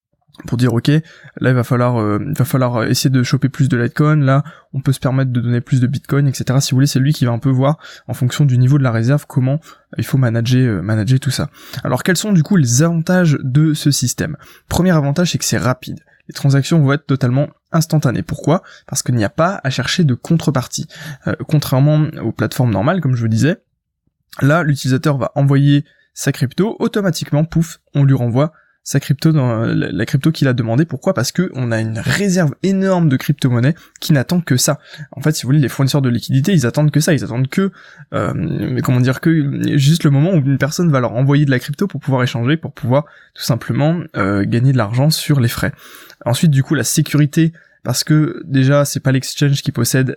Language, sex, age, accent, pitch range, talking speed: French, male, 20-39, French, 125-155 Hz, 225 wpm